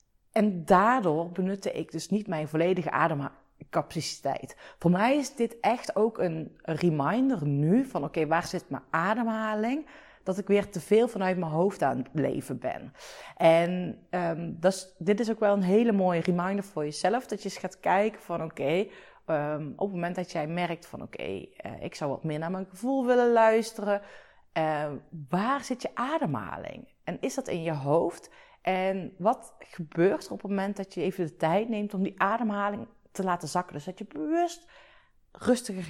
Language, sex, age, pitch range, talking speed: Dutch, female, 40-59, 165-215 Hz, 175 wpm